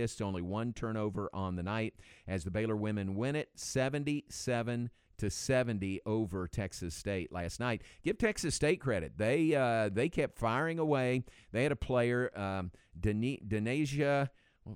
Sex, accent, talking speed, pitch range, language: male, American, 150 wpm, 100-125 Hz, English